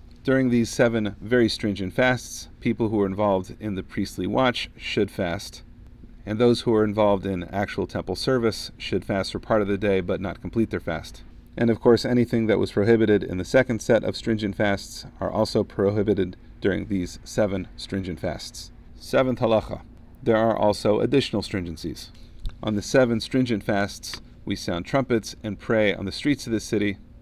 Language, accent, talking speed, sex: English, American, 180 wpm, male